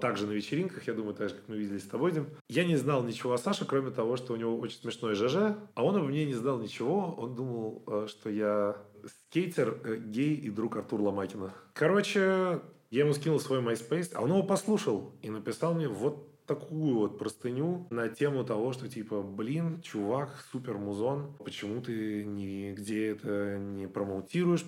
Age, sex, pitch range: 20-39, male, 105-155 Hz